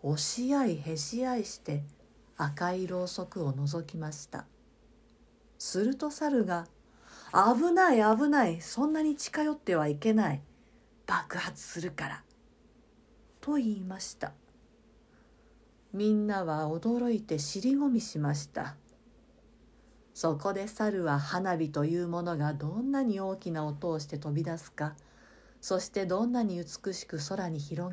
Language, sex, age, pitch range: Japanese, female, 50-69, 160-225 Hz